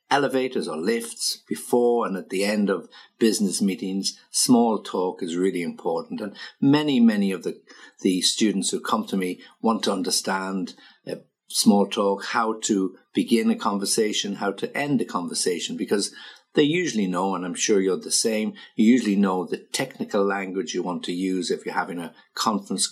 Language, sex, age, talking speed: English, male, 50-69, 180 wpm